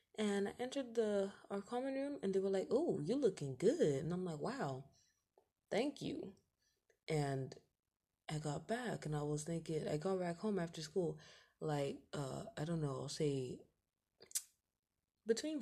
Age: 20-39